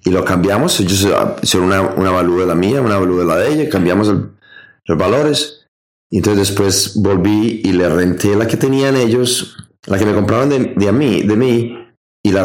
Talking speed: 210 wpm